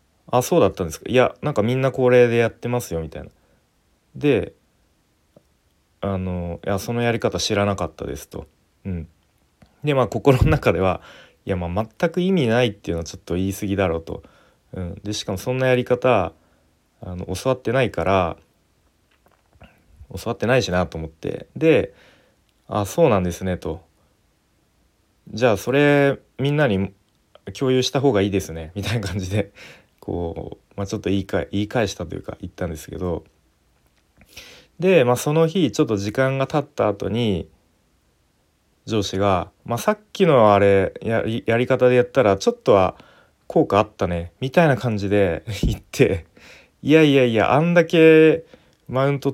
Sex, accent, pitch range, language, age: male, native, 90-130 Hz, Japanese, 30-49